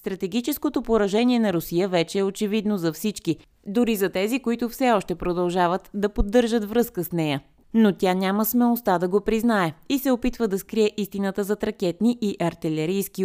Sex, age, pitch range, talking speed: female, 20-39, 175-215 Hz, 170 wpm